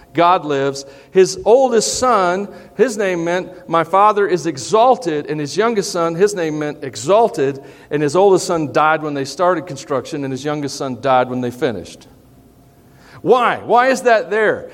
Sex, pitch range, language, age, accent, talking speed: male, 140-205 Hz, English, 50-69, American, 170 wpm